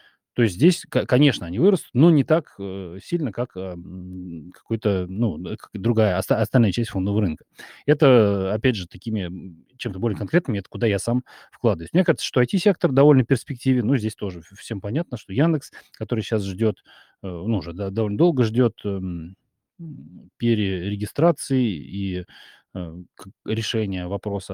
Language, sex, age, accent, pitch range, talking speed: Russian, male, 30-49, native, 95-120 Hz, 130 wpm